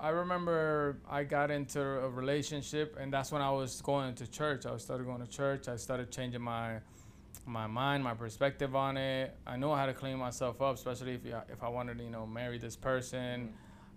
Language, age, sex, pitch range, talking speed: English, 20-39, male, 125-145 Hz, 205 wpm